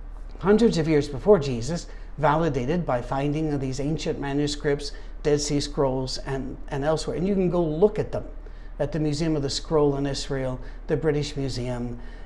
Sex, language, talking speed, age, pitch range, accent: male, English, 170 wpm, 60-79, 135-170 Hz, American